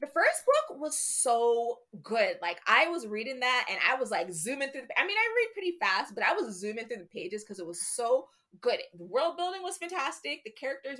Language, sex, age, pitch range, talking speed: English, female, 20-39, 195-290 Hz, 240 wpm